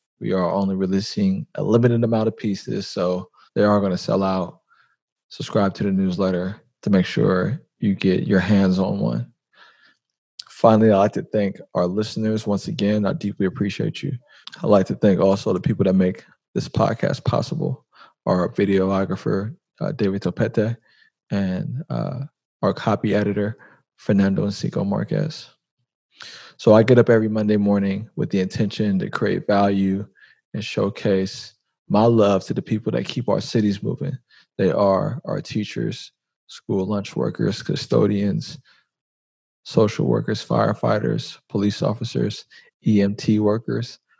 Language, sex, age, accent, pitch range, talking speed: English, male, 20-39, American, 95-115 Hz, 145 wpm